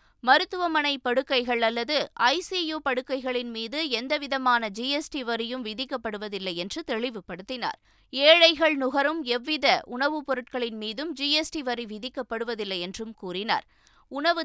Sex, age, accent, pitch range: female, 20-39, native, 235-290 Hz